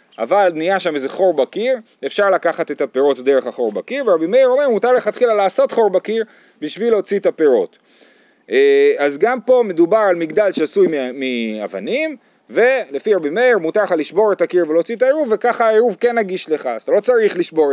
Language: Hebrew